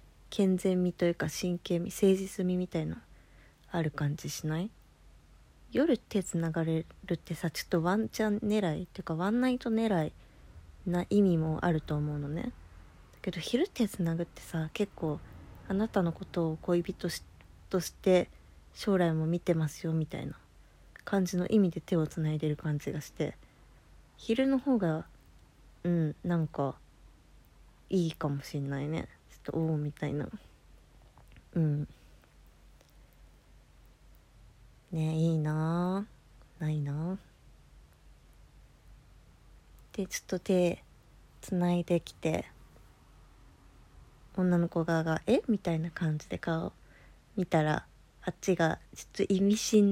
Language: Japanese